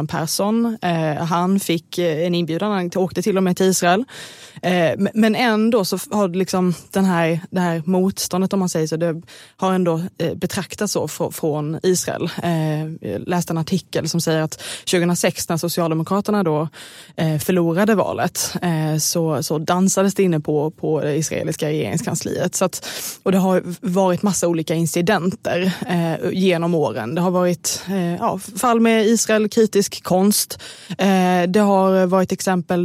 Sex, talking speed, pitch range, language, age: female, 155 wpm, 165-190 Hz, Swedish, 20-39